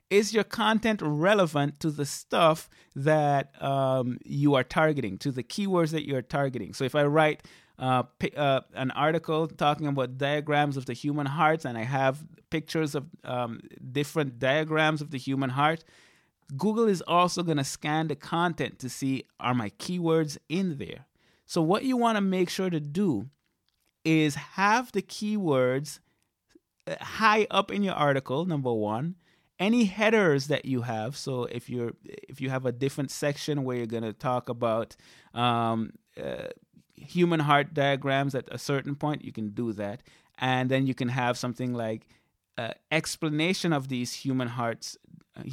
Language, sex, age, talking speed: English, male, 30-49, 170 wpm